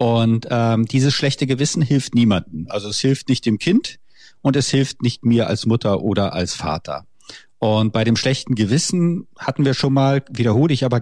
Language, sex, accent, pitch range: German, male, German, 105-135 Hz